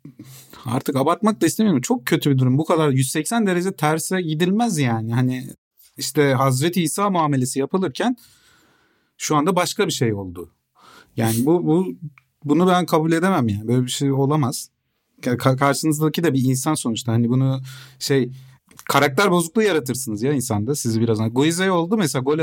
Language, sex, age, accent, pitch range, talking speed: Turkish, male, 40-59, native, 125-165 Hz, 160 wpm